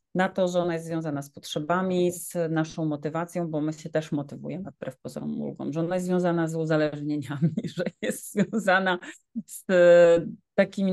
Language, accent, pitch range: Polish, native, 155-190 Hz